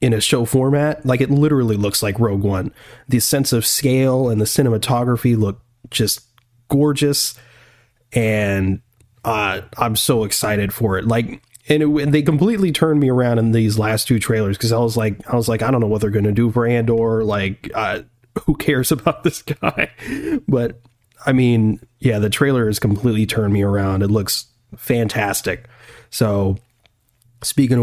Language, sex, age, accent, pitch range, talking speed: English, male, 30-49, American, 110-125 Hz, 175 wpm